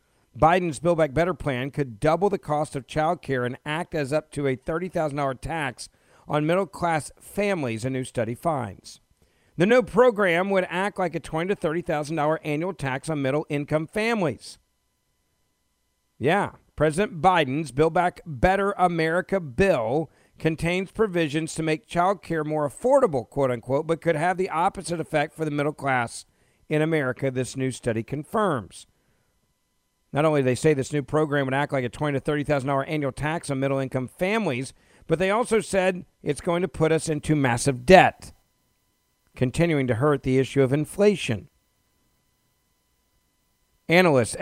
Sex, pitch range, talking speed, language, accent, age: male, 135-170 Hz, 160 wpm, English, American, 50-69